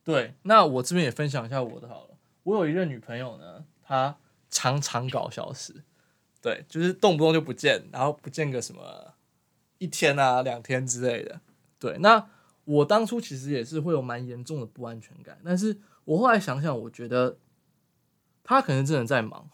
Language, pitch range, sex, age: Chinese, 130-165 Hz, male, 20-39